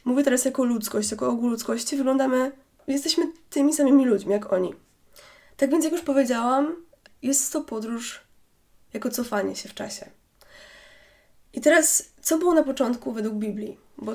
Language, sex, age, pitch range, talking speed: Polish, female, 20-39, 220-275 Hz, 155 wpm